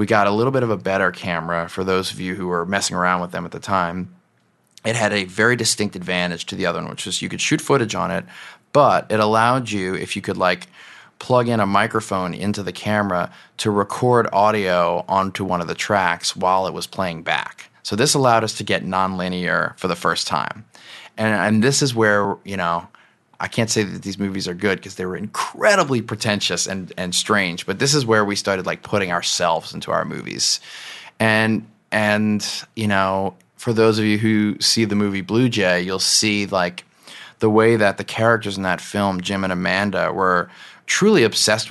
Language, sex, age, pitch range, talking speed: English, male, 30-49, 95-110 Hz, 210 wpm